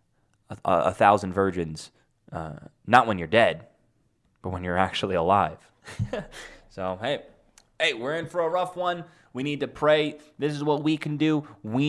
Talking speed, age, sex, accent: 170 wpm, 20-39, male, American